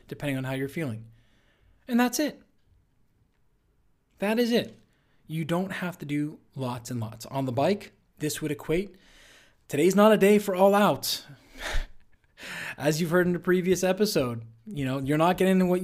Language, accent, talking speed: English, American, 170 wpm